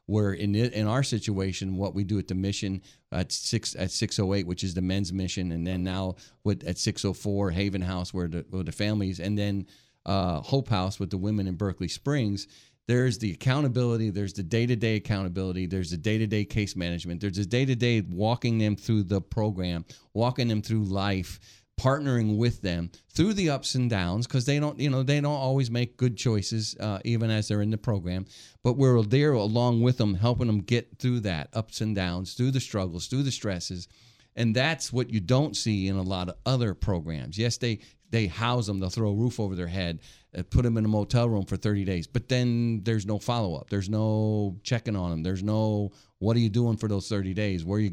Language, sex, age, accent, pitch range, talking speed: English, male, 40-59, American, 95-120 Hz, 225 wpm